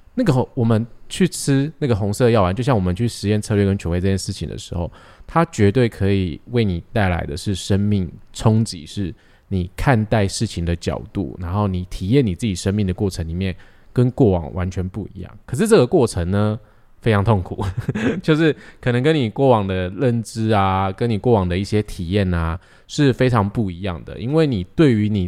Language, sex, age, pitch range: Chinese, male, 20-39, 95-125 Hz